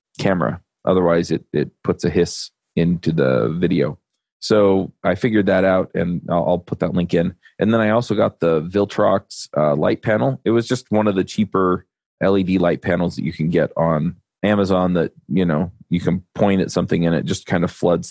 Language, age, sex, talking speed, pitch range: English, 30-49, male, 205 wpm, 85-100 Hz